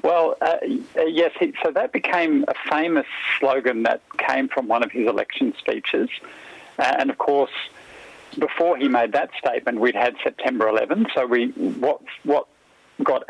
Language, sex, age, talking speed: English, male, 50-69, 165 wpm